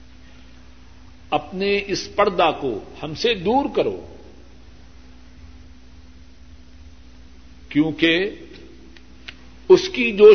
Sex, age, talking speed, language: male, 50-69, 70 wpm, Urdu